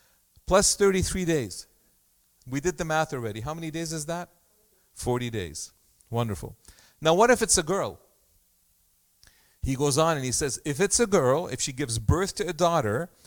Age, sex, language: 40-59, male, English